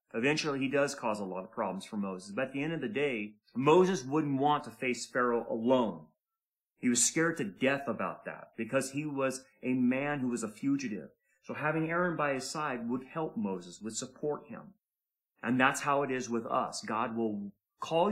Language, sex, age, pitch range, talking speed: English, male, 30-49, 115-155 Hz, 205 wpm